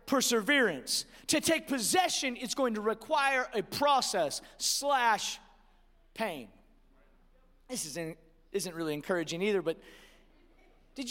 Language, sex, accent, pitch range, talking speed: English, male, American, 200-295 Hz, 110 wpm